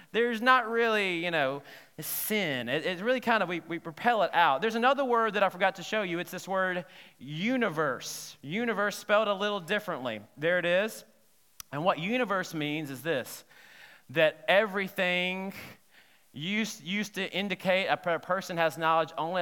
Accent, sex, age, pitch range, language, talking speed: American, male, 30-49, 145-195 Hz, English, 170 wpm